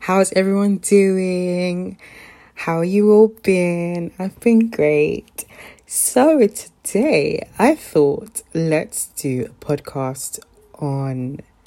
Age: 20-39